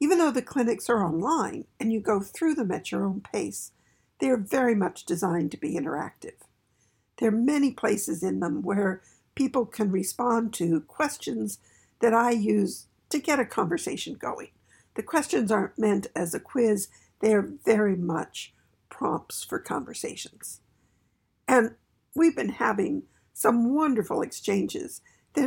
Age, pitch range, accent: 60-79, 195-275 Hz, American